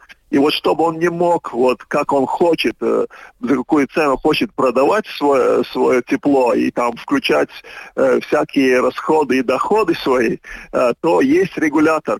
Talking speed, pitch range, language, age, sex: 155 wpm, 135-175 Hz, Russian, 40-59, male